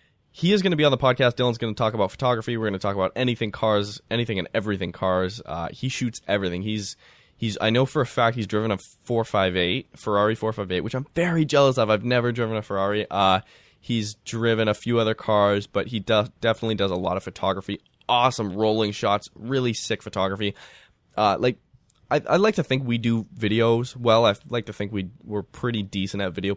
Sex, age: male, 10-29